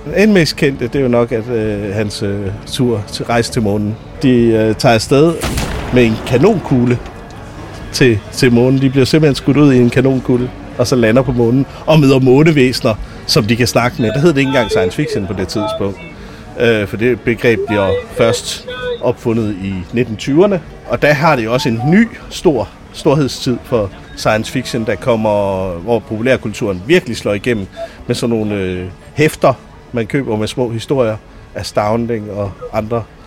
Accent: native